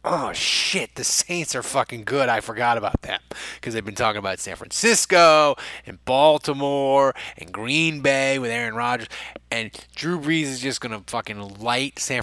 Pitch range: 110-145 Hz